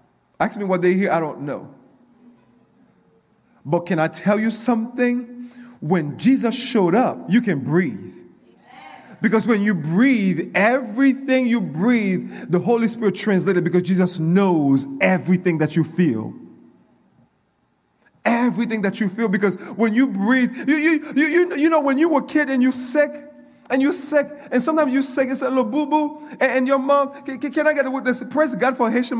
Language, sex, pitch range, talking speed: English, male, 195-270 Hz, 175 wpm